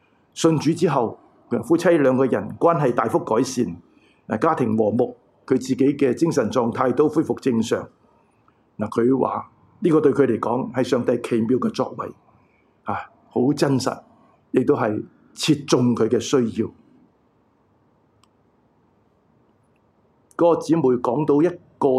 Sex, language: male, Chinese